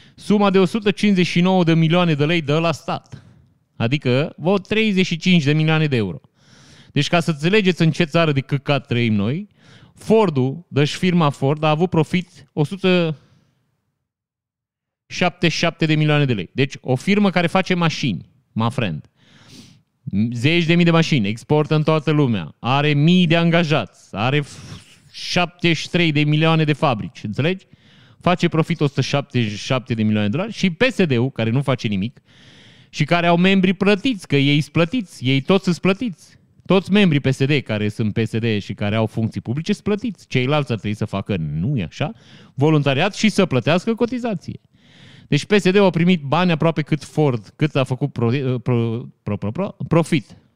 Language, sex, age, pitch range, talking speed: Romanian, male, 30-49, 125-175 Hz, 160 wpm